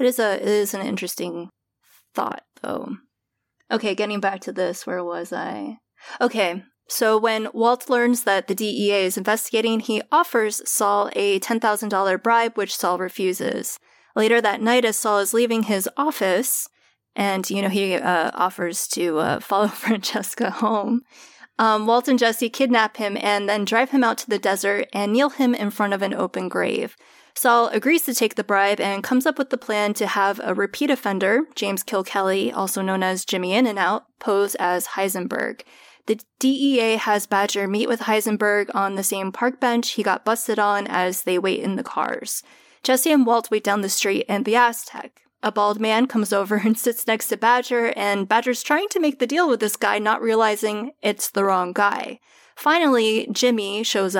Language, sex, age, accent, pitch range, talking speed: English, female, 20-39, American, 195-235 Hz, 185 wpm